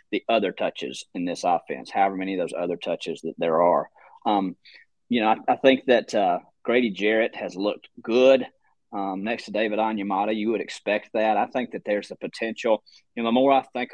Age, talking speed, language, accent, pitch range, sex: 30-49, 210 wpm, English, American, 105-130 Hz, male